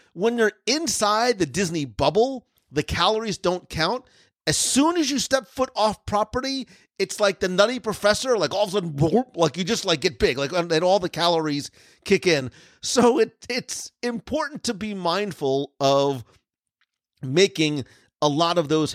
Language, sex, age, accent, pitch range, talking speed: English, male, 40-59, American, 150-205 Hz, 170 wpm